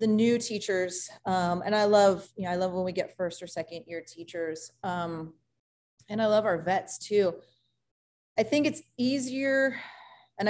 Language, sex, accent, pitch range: English, female, American, 170-210 Hz